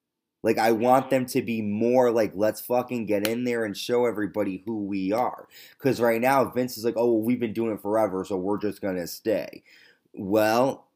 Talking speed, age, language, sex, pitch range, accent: 215 wpm, 20-39, English, male, 100-120 Hz, American